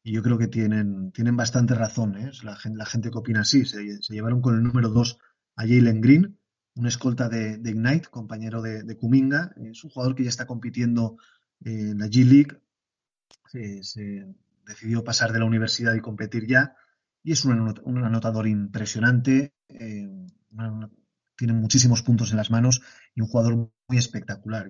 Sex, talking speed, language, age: male, 170 wpm, Spanish, 30-49